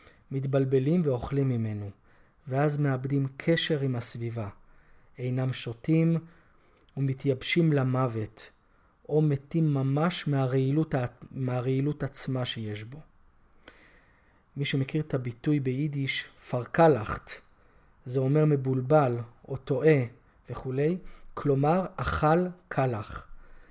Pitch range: 125-155 Hz